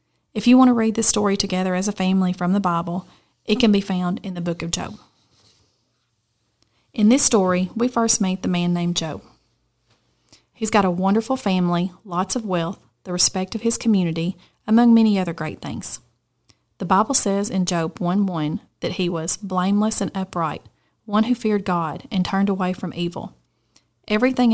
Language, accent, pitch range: English, American, 175-215 Hz